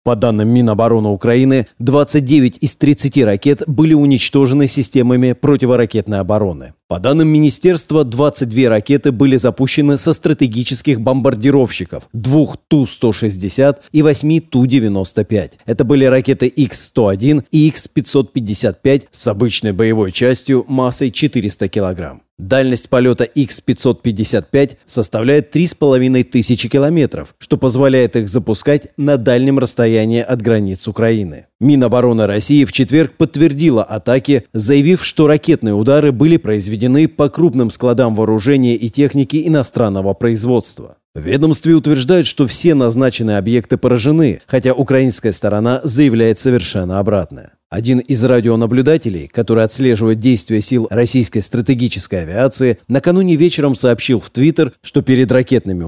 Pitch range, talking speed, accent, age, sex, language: 115-145 Hz, 115 wpm, native, 30-49, male, Russian